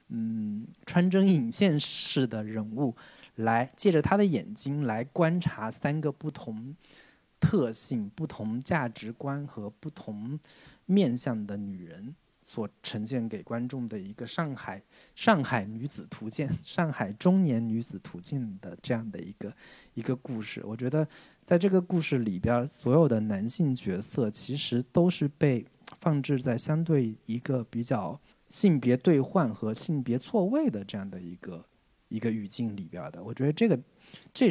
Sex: male